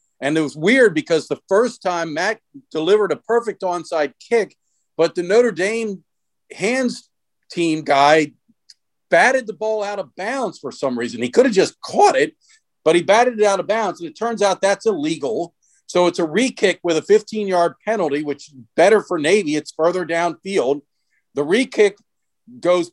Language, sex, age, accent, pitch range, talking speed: English, male, 50-69, American, 155-205 Hz, 175 wpm